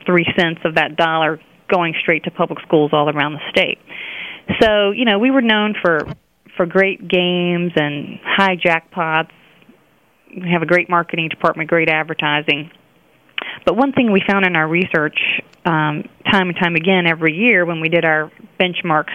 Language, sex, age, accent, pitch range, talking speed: English, female, 30-49, American, 160-190 Hz, 170 wpm